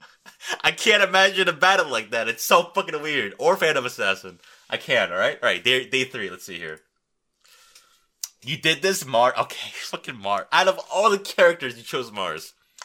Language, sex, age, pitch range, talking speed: English, male, 20-39, 110-150 Hz, 180 wpm